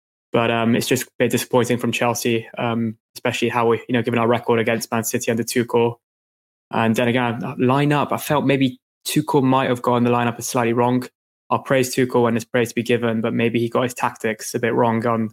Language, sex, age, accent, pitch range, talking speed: English, male, 20-39, British, 115-125 Hz, 230 wpm